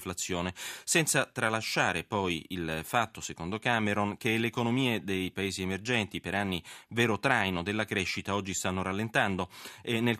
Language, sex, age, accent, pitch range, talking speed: Italian, male, 30-49, native, 95-125 Hz, 140 wpm